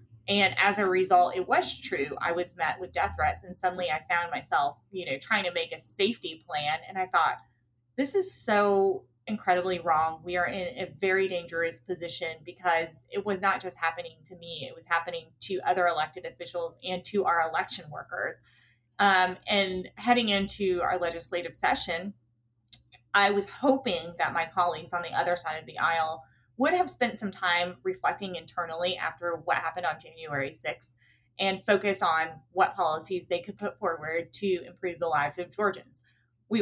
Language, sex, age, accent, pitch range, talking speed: English, female, 20-39, American, 165-200 Hz, 180 wpm